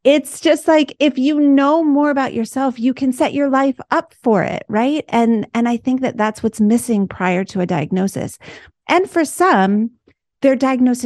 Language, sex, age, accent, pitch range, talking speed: English, female, 30-49, American, 190-240 Hz, 190 wpm